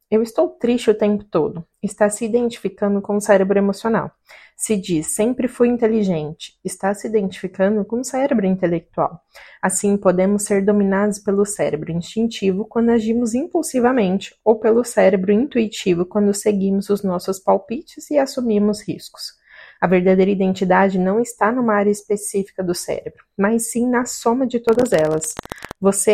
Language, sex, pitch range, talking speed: Portuguese, female, 190-230 Hz, 150 wpm